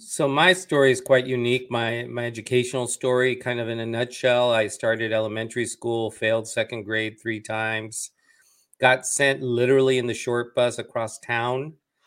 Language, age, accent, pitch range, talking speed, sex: English, 40-59, American, 110-125 Hz, 165 wpm, male